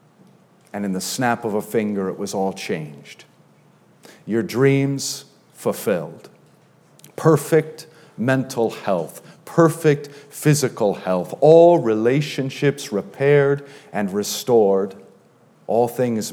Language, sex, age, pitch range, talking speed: English, male, 40-59, 105-145 Hz, 100 wpm